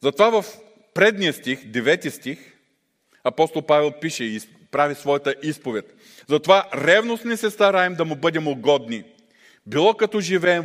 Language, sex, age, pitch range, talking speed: Bulgarian, male, 50-69, 135-195 Hz, 135 wpm